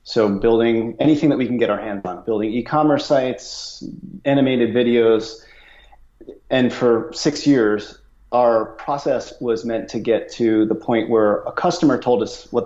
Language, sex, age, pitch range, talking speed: English, male, 30-49, 105-120 Hz, 165 wpm